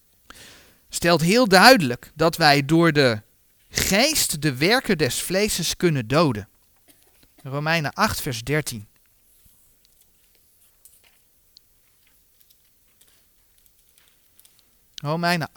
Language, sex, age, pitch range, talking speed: Dutch, male, 40-59, 125-200 Hz, 75 wpm